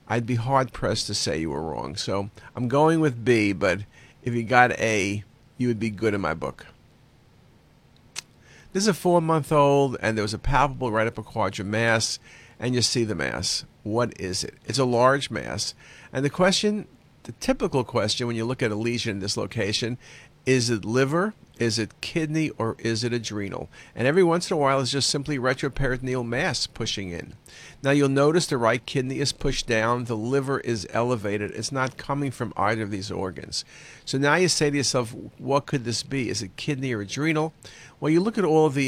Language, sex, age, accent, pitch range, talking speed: English, male, 50-69, American, 115-140 Hz, 200 wpm